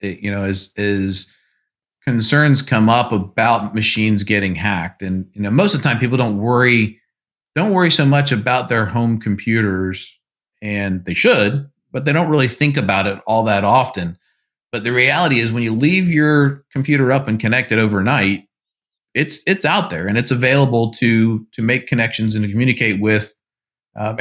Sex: male